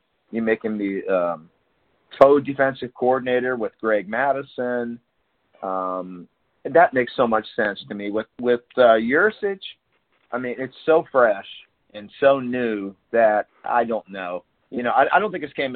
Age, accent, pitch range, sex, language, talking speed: 40-59, American, 105-130 Hz, male, English, 165 wpm